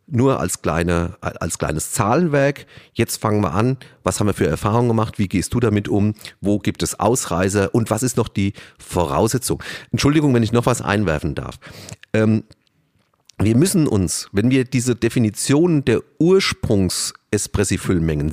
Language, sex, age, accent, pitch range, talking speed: German, male, 40-59, German, 100-130 Hz, 155 wpm